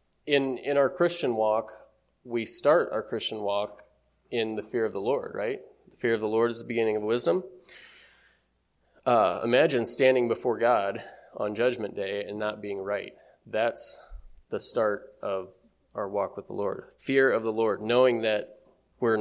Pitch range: 105-130 Hz